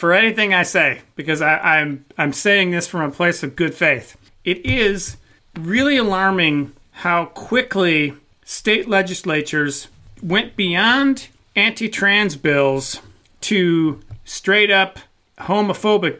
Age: 40-59